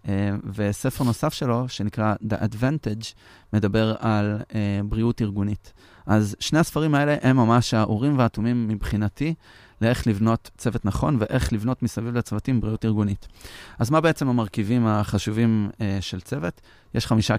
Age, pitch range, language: 30-49, 105-125 Hz, Hebrew